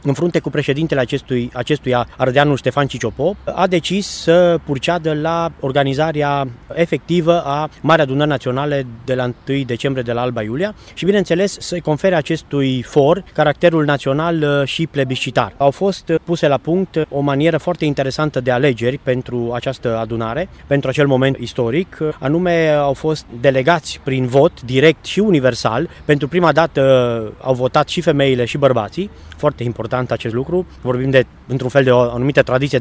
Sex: male